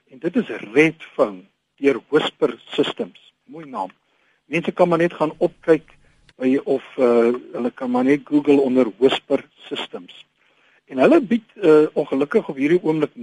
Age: 60-79